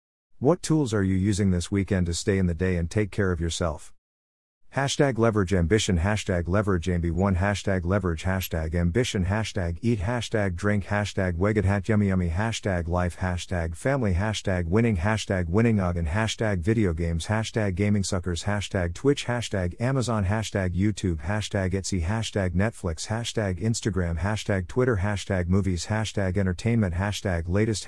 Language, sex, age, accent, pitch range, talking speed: English, male, 50-69, American, 90-110 Hz, 155 wpm